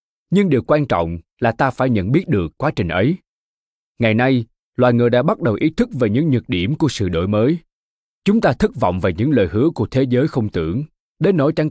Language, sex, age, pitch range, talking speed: Vietnamese, male, 20-39, 100-145 Hz, 235 wpm